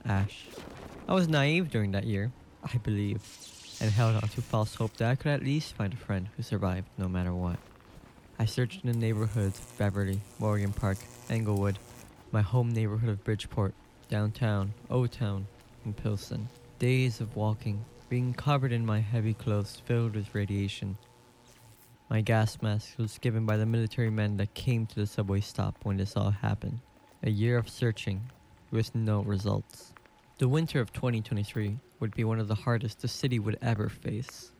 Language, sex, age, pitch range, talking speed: English, male, 20-39, 105-120 Hz, 175 wpm